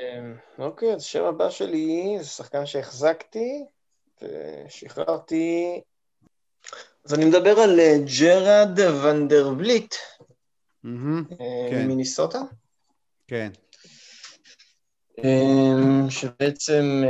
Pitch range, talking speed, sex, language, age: 130-160 Hz, 65 wpm, male, Hebrew, 20-39